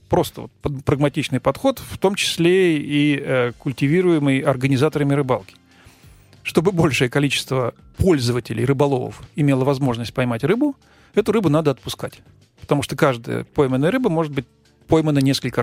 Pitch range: 125-150 Hz